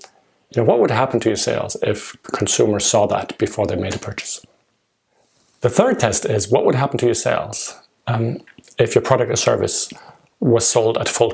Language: English